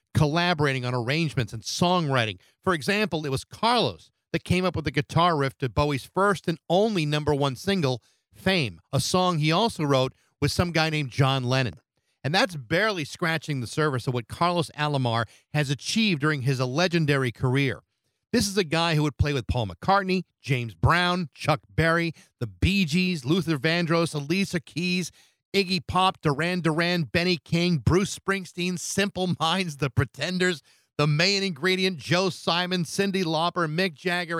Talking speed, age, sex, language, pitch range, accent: 165 wpm, 40-59, male, English, 130-180 Hz, American